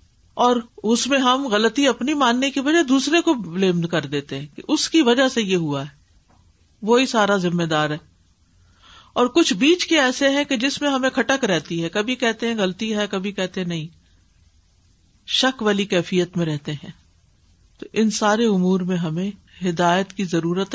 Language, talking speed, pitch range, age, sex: Urdu, 190 wpm, 170-260 Hz, 50-69, female